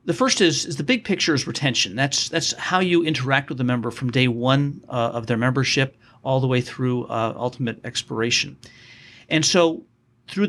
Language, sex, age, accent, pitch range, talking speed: English, male, 50-69, American, 120-150 Hz, 195 wpm